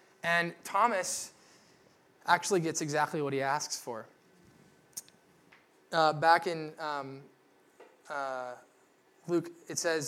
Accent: American